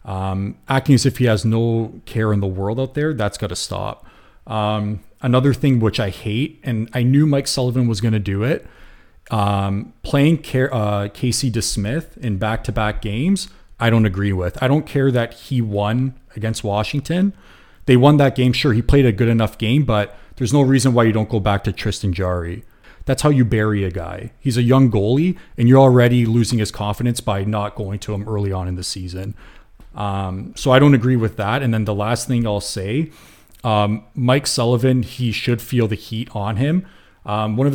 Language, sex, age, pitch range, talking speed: English, male, 30-49, 105-130 Hz, 210 wpm